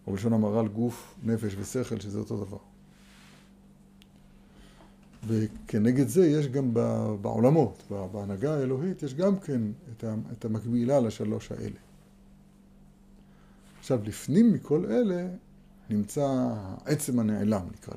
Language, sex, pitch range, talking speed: Hebrew, male, 115-175 Hz, 105 wpm